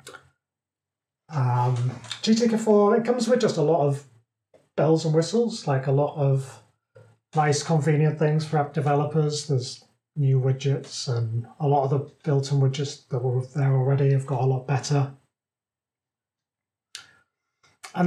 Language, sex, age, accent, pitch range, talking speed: English, male, 30-49, British, 130-160 Hz, 140 wpm